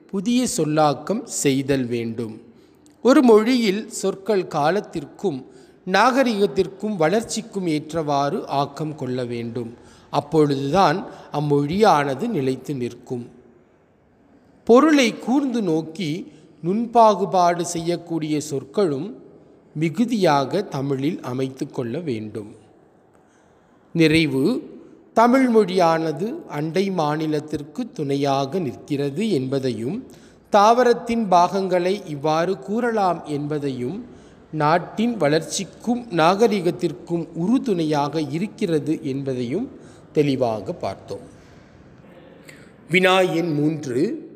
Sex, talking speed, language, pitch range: male, 70 wpm, Tamil, 145-205 Hz